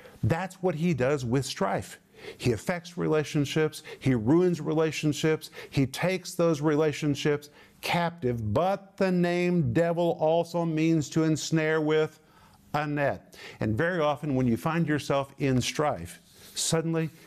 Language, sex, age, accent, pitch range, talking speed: English, male, 50-69, American, 130-160 Hz, 130 wpm